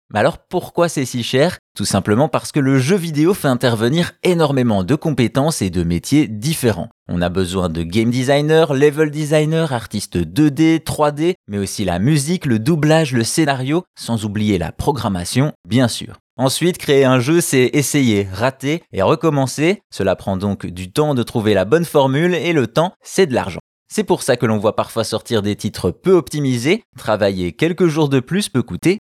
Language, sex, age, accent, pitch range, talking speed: French, male, 20-39, French, 110-155 Hz, 190 wpm